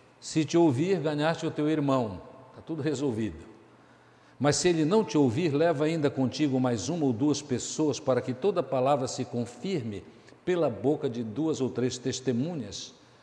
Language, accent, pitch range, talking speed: Portuguese, Brazilian, 125-155 Hz, 170 wpm